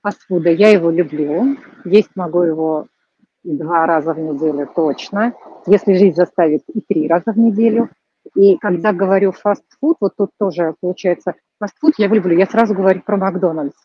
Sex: female